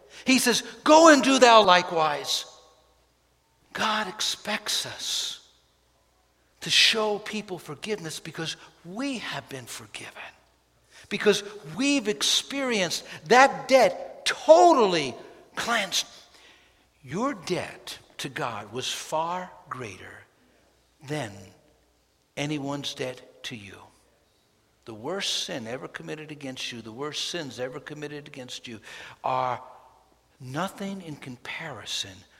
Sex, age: male, 60-79